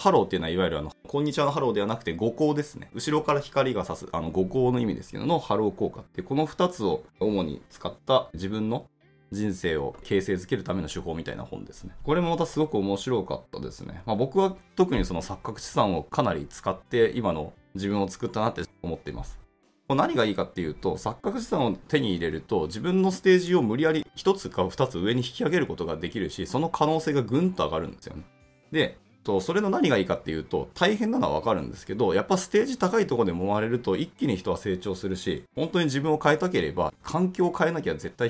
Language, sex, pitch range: Japanese, male, 100-155 Hz